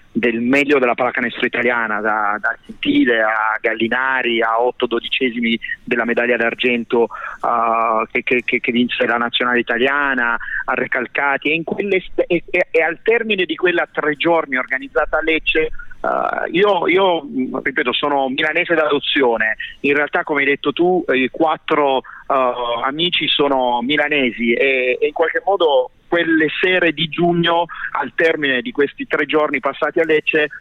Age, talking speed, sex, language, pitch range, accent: 30-49, 150 wpm, male, Italian, 125-160 Hz, native